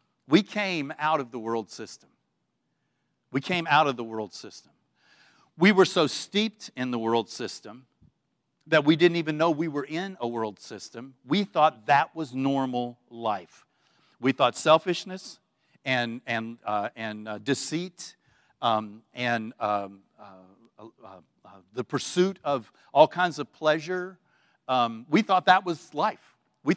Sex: male